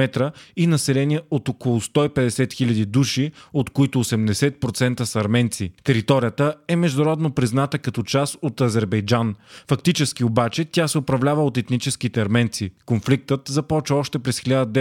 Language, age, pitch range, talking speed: Bulgarian, 30-49, 120-145 Hz, 130 wpm